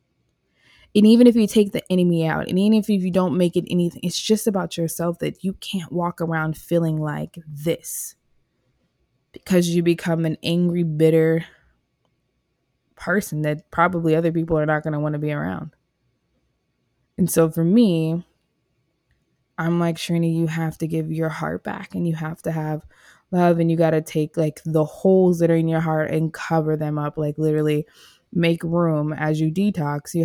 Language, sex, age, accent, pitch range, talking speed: English, female, 20-39, American, 160-185 Hz, 185 wpm